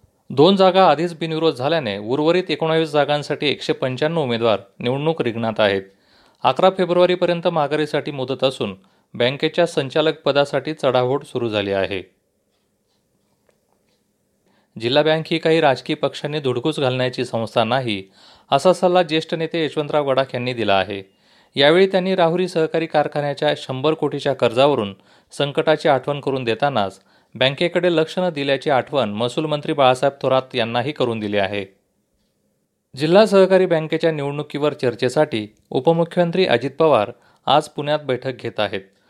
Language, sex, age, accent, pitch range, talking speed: Marathi, male, 30-49, native, 120-160 Hz, 125 wpm